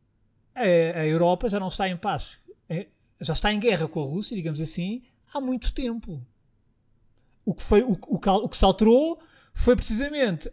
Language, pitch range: Portuguese, 145-225 Hz